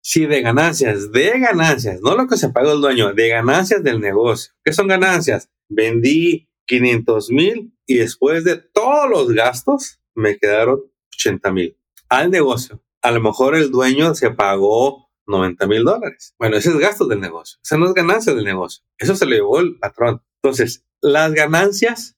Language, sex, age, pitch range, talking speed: Spanish, male, 30-49, 115-185 Hz, 175 wpm